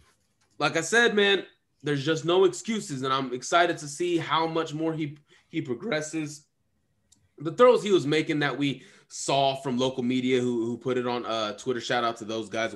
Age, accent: 20-39, American